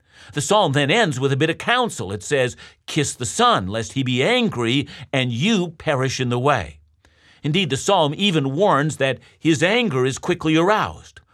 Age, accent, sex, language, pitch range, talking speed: 60-79, American, male, English, 105-165 Hz, 185 wpm